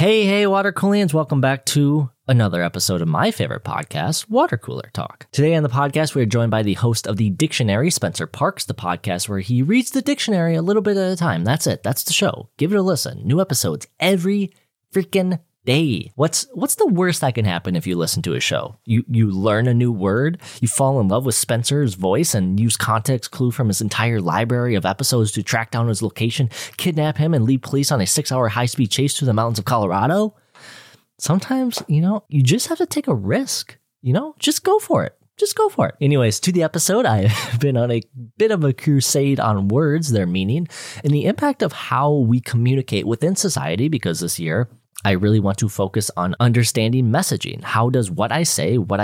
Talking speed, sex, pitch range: 220 wpm, male, 110-160 Hz